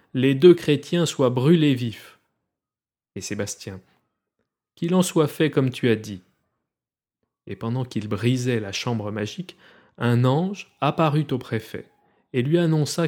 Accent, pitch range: French, 115-150 Hz